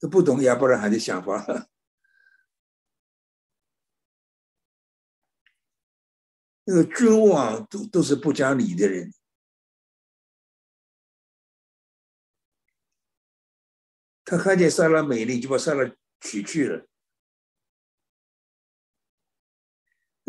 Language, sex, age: Chinese, male, 60-79